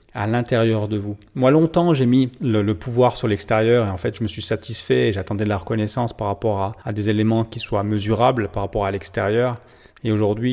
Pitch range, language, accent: 105-125 Hz, French, French